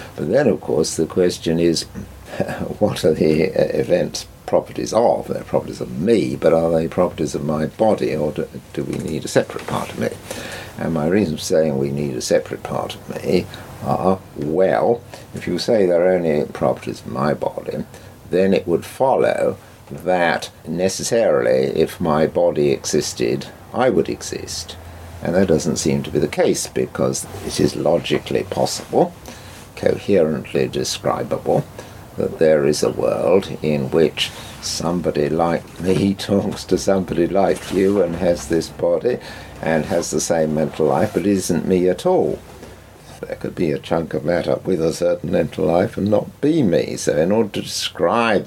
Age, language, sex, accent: 60-79, English, male, British